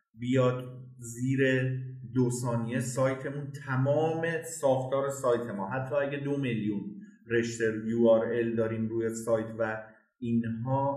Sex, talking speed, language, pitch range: male, 110 wpm, Persian, 115-135 Hz